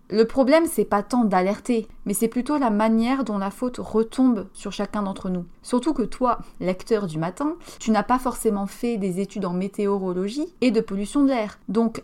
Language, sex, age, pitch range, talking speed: French, female, 30-49, 190-240 Hz, 200 wpm